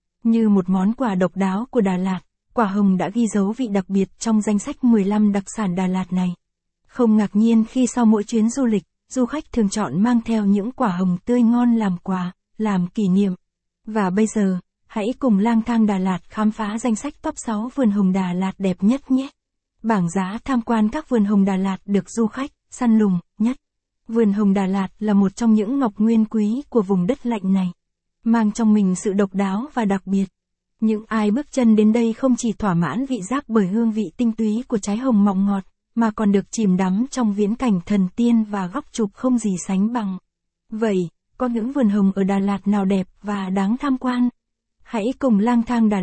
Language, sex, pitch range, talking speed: Vietnamese, female, 195-235 Hz, 225 wpm